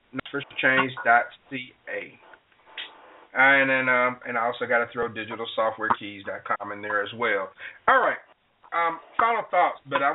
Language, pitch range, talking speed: English, 125-155 Hz, 130 wpm